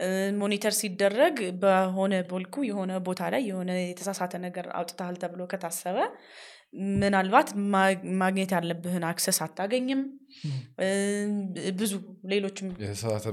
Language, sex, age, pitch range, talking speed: Amharic, female, 20-39, 180-215 Hz, 105 wpm